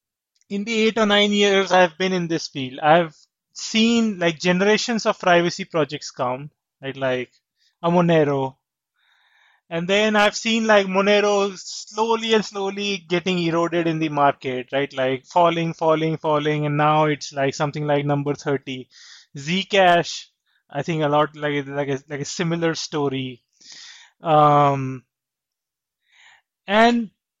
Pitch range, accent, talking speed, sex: 150-210 Hz, Indian, 140 wpm, male